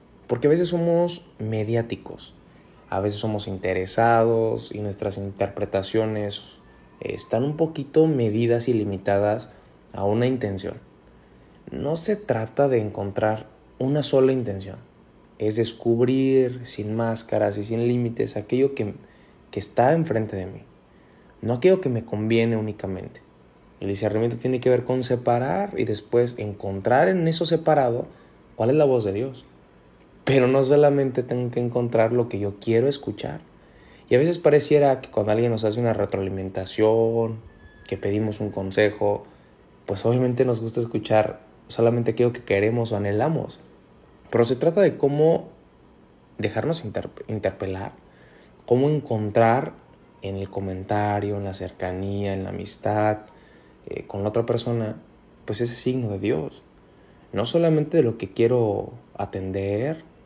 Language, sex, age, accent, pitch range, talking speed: Spanish, male, 20-39, Mexican, 100-125 Hz, 140 wpm